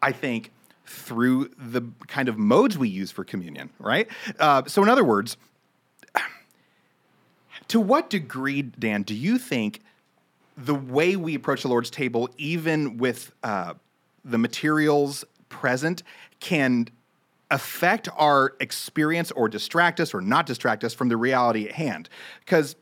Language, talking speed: English, 140 wpm